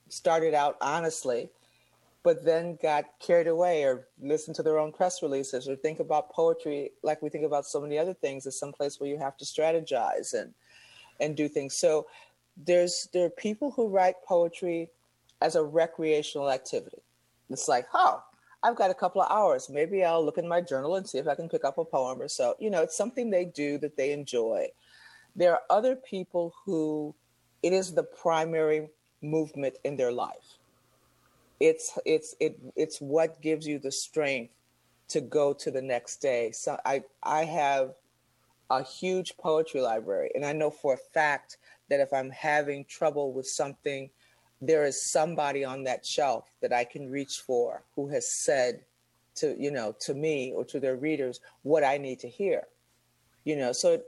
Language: English